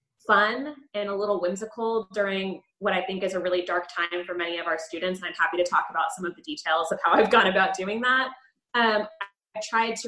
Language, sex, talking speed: English, female, 240 wpm